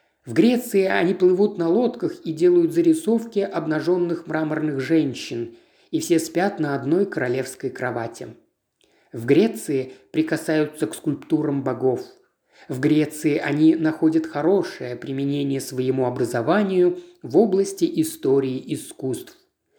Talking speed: 110 wpm